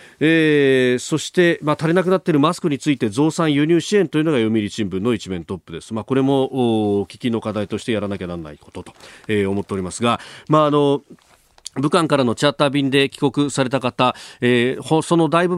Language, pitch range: Japanese, 100-135 Hz